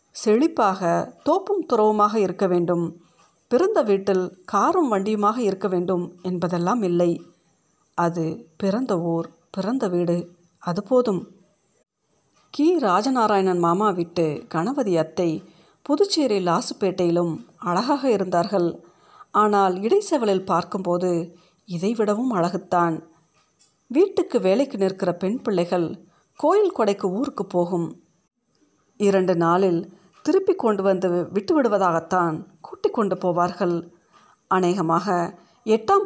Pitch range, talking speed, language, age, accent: 175-235 Hz, 90 wpm, Tamil, 50-69, native